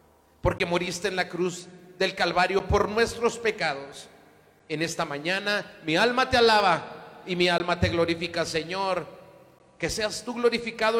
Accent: Mexican